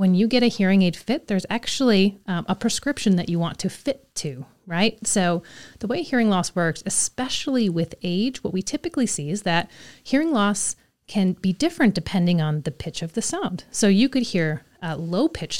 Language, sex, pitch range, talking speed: English, female, 165-225 Hz, 205 wpm